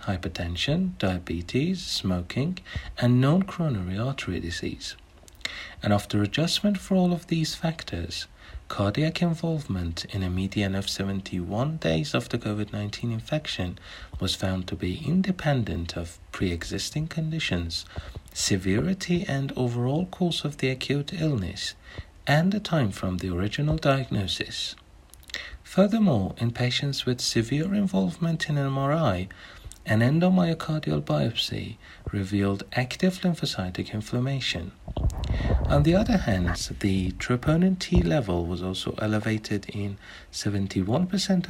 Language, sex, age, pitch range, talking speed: Persian, male, 60-79, 95-155 Hz, 110 wpm